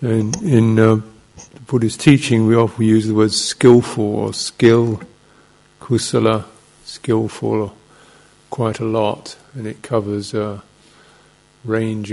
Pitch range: 105-115 Hz